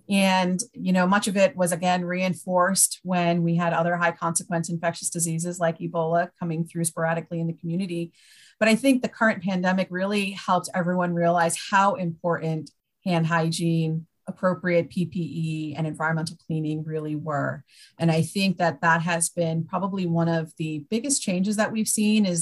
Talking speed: 170 wpm